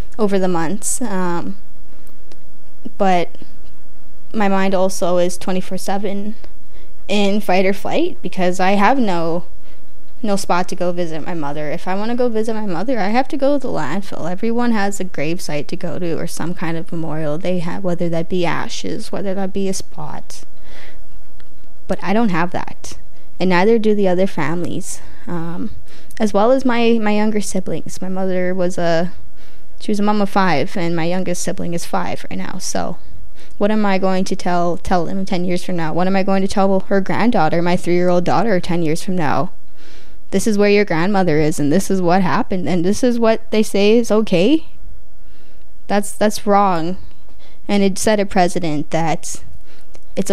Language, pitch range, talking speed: English, 170-200 Hz, 190 wpm